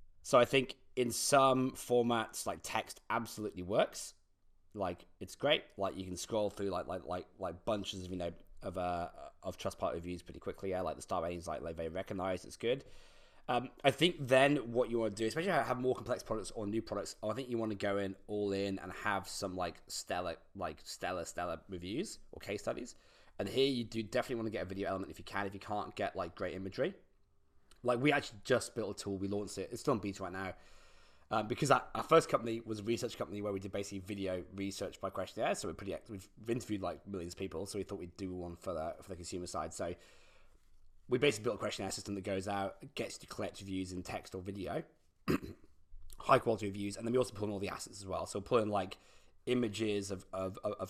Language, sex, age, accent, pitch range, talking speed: English, male, 20-39, British, 90-115 Hz, 235 wpm